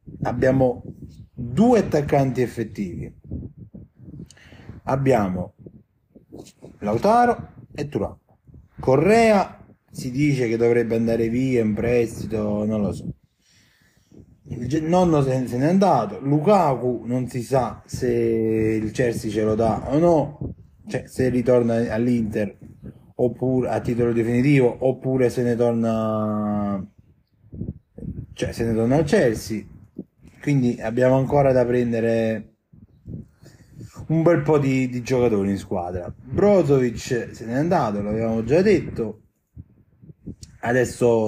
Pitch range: 110-130 Hz